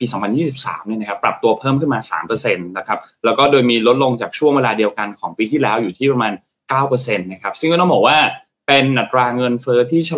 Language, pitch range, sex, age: Thai, 110-145 Hz, male, 20-39